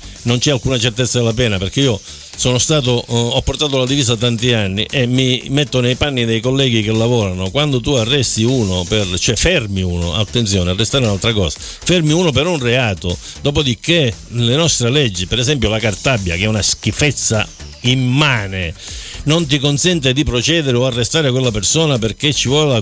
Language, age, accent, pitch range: Italian, 60-79, native, 115-160 Hz